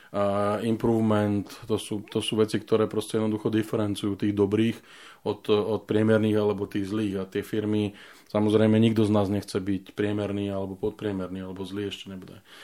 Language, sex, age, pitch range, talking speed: Slovak, male, 20-39, 105-110 Hz, 160 wpm